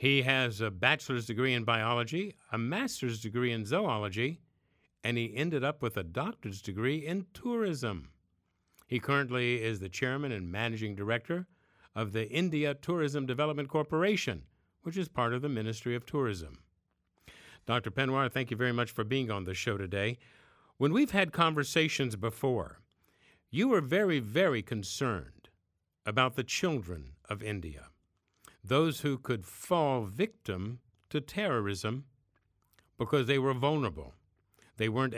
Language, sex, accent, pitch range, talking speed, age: English, male, American, 105-140 Hz, 145 wpm, 50-69